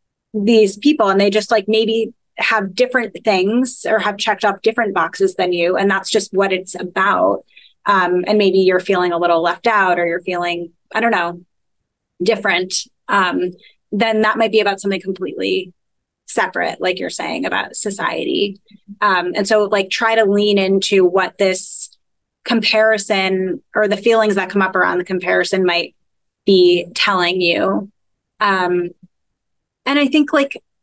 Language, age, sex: English, 20-39, female